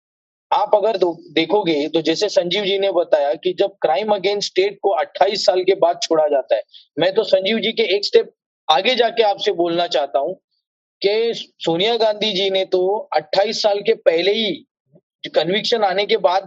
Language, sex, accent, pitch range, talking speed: English, male, Indian, 190-225 Hz, 185 wpm